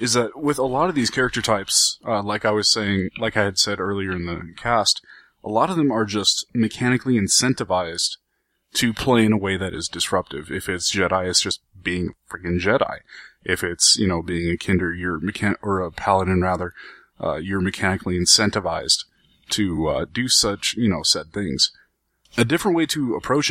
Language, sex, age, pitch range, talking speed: English, male, 20-39, 95-120 Hz, 195 wpm